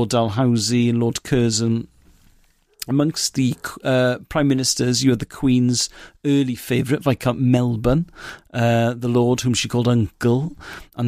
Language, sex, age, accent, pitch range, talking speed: English, male, 40-59, British, 120-145 Hz, 145 wpm